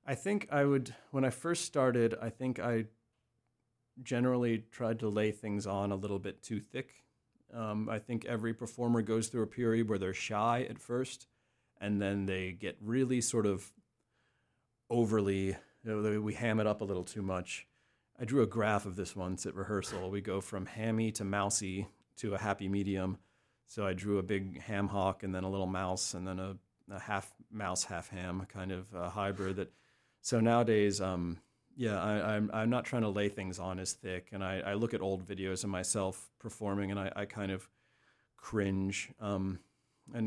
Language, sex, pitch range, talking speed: English, male, 95-115 Hz, 195 wpm